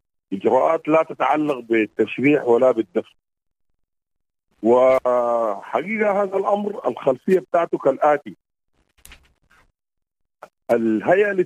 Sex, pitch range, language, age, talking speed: male, 100-155 Hz, English, 40-59, 70 wpm